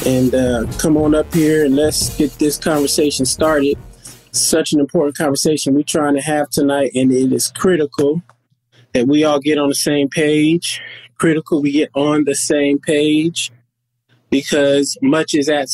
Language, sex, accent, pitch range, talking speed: English, male, American, 135-160 Hz, 170 wpm